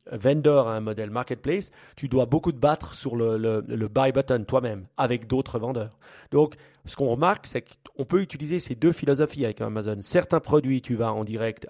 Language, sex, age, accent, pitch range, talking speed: French, male, 40-59, French, 110-145 Hz, 195 wpm